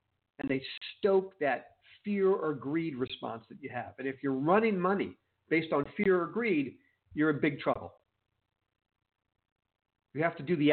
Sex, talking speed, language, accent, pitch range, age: male, 170 wpm, English, American, 110-175 Hz, 50-69